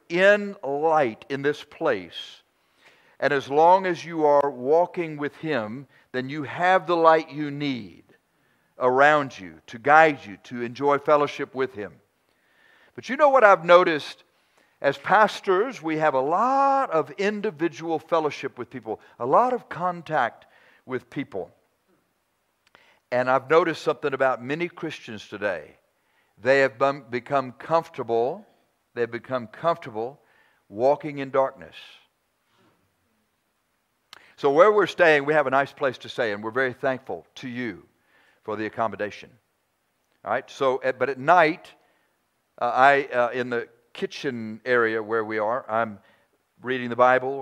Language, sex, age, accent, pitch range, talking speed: English, male, 60-79, American, 125-160 Hz, 140 wpm